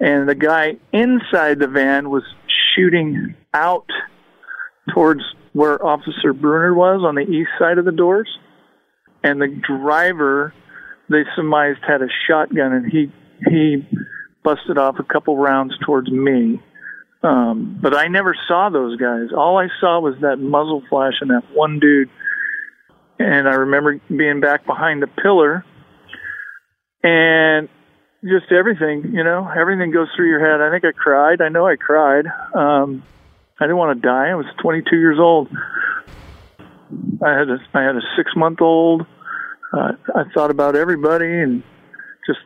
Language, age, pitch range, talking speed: English, 50-69, 145-175 Hz, 155 wpm